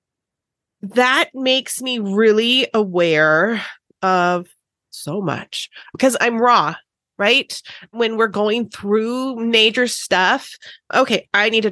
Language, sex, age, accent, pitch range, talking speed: English, female, 30-49, American, 180-240 Hz, 115 wpm